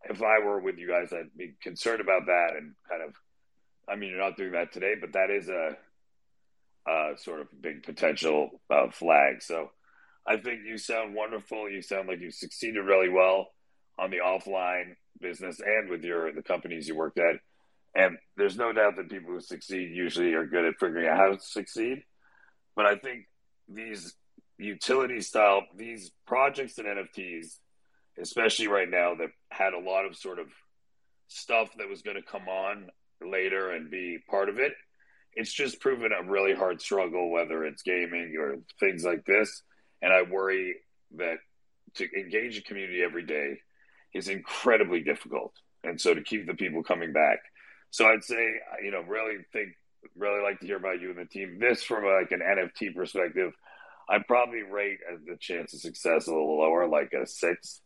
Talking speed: 185 wpm